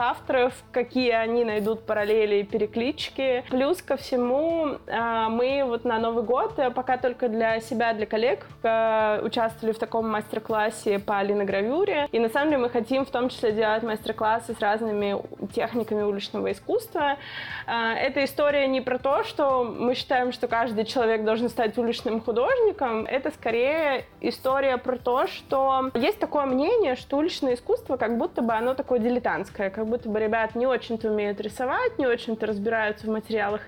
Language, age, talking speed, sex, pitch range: Russian, 20-39, 160 wpm, female, 220-255 Hz